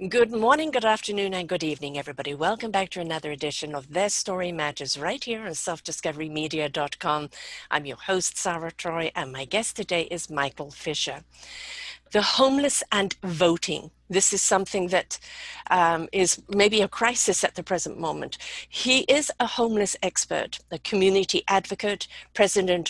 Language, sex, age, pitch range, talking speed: English, female, 50-69, 180-215 Hz, 155 wpm